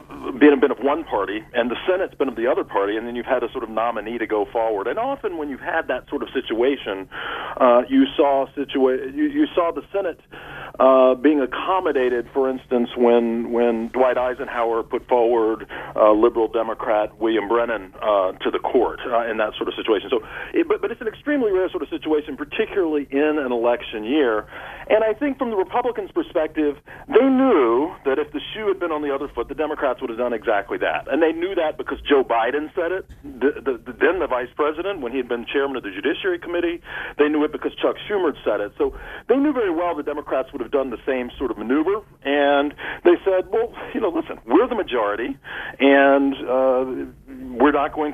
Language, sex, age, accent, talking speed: English, male, 40-59, American, 215 wpm